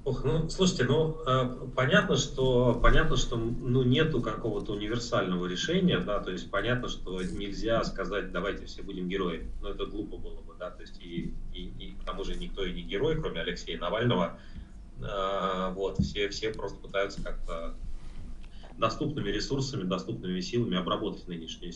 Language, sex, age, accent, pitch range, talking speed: Russian, male, 30-49, native, 90-120 Hz, 170 wpm